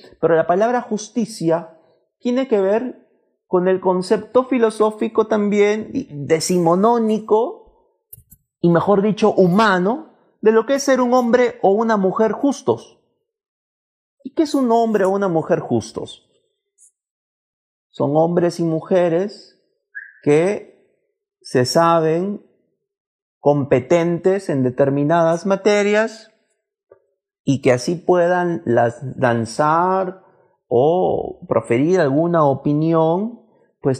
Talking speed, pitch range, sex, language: 105 wpm, 150-220 Hz, male, Spanish